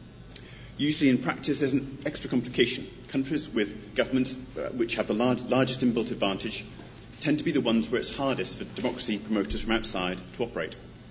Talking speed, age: 180 wpm, 40-59